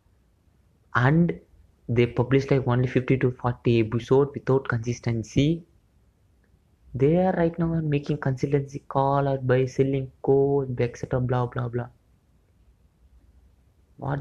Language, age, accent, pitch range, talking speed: English, 20-39, Indian, 100-135 Hz, 115 wpm